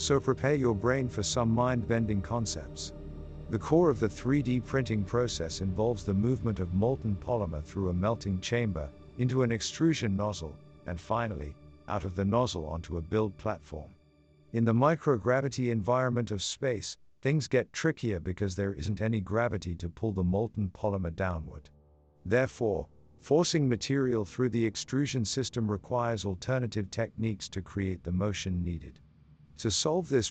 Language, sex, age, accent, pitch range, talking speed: English, male, 50-69, American, 85-120 Hz, 150 wpm